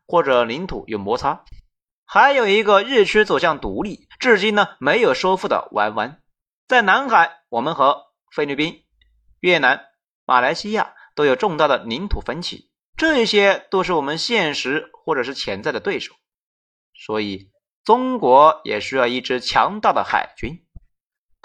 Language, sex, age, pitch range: Chinese, male, 30-49, 170-260 Hz